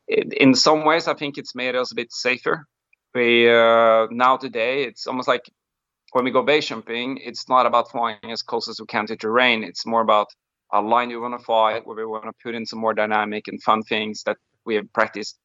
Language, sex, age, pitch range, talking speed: English, male, 30-49, 110-125 Hz, 220 wpm